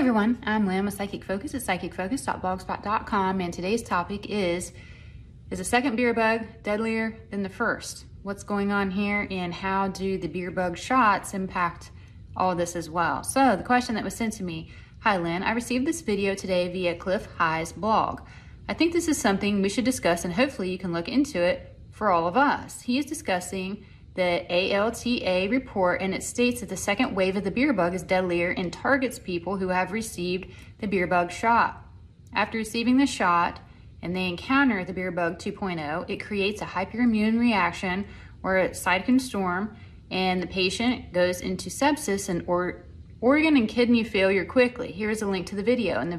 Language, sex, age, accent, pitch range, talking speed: English, female, 30-49, American, 180-230 Hz, 190 wpm